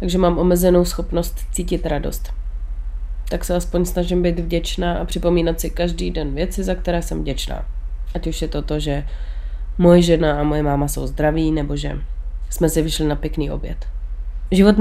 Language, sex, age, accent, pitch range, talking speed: Czech, female, 30-49, native, 130-170 Hz, 180 wpm